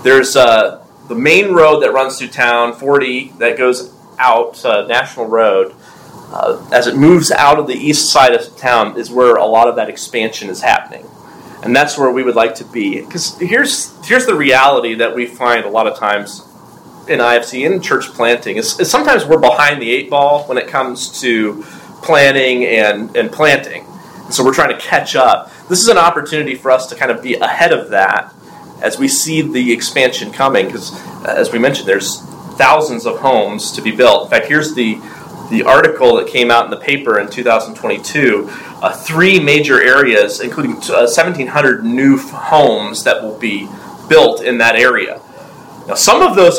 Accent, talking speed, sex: American, 195 wpm, male